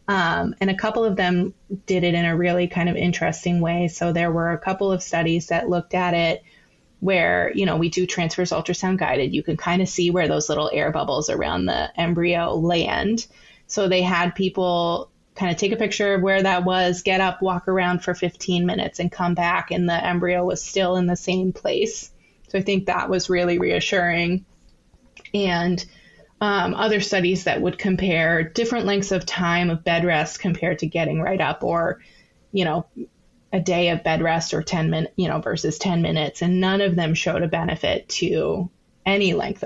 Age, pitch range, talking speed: 20-39, 170-195 Hz, 200 wpm